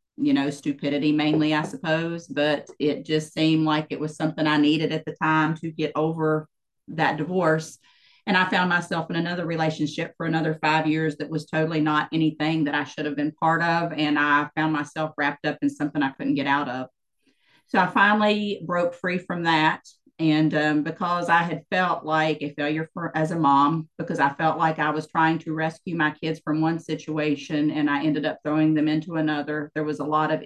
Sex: female